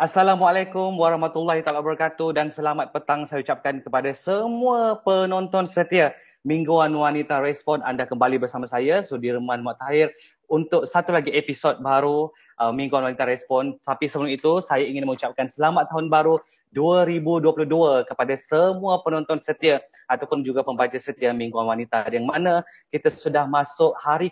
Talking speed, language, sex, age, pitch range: 140 wpm, Malay, male, 20-39, 130-160 Hz